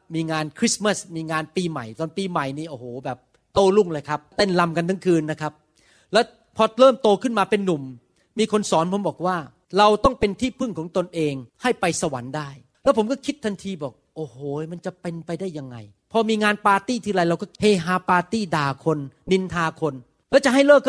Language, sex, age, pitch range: Thai, male, 30-49, 150-215 Hz